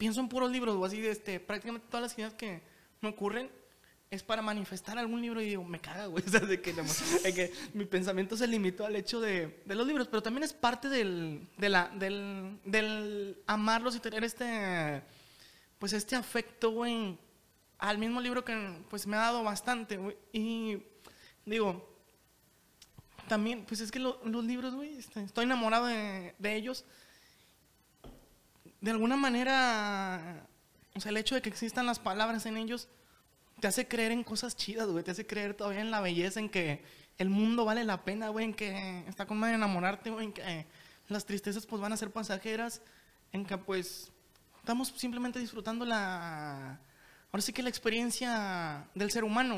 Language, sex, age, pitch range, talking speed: Spanish, male, 20-39, 195-230 Hz, 180 wpm